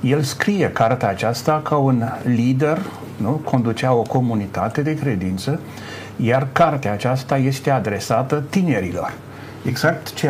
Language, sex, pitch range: Romanian, male, 110-140 Hz